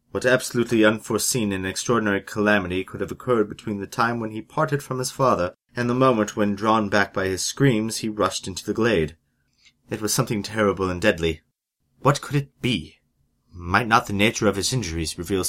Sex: male